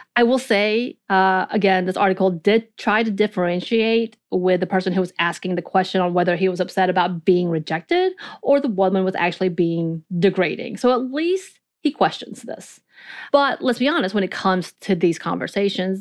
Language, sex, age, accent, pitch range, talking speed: English, female, 30-49, American, 180-230 Hz, 185 wpm